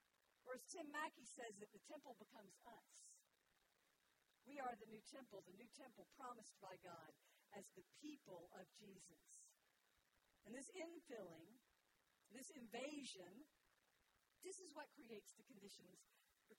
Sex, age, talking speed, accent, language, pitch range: female, 50-69, 140 wpm, American, English, 240-355 Hz